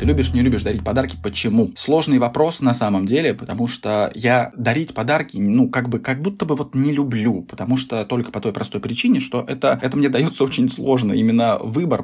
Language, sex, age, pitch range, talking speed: Russian, male, 20-39, 105-130 Hz, 210 wpm